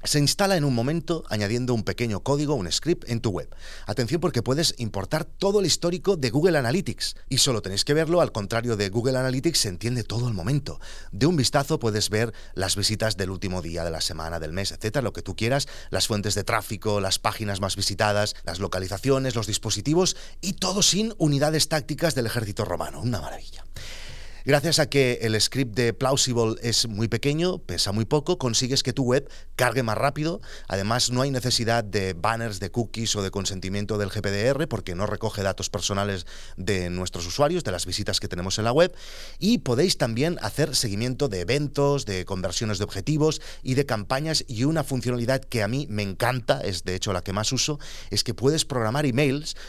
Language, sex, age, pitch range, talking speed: Spanish, male, 30-49, 100-140 Hz, 200 wpm